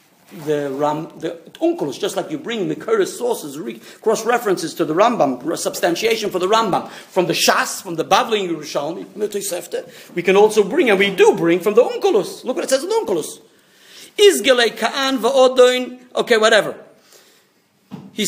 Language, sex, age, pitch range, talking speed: English, male, 50-69, 215-300 Hz, 175 wpm